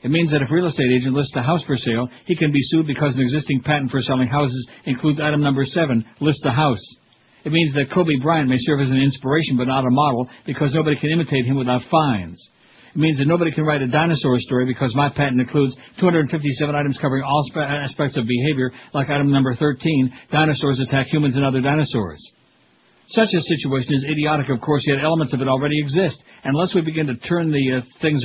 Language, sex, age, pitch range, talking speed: English, male, 60-79, 130-155 Hz, 220 wpm